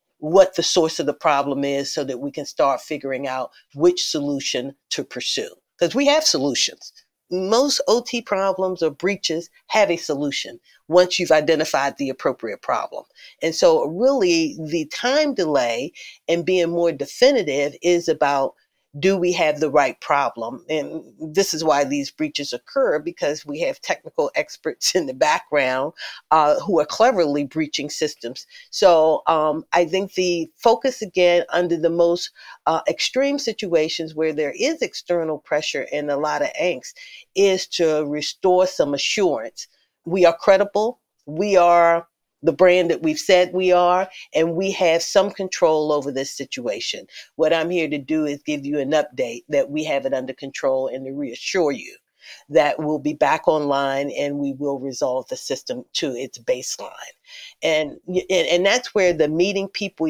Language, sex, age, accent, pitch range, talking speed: English, female, 50-69, American, 150-200 Hz, 165 wpm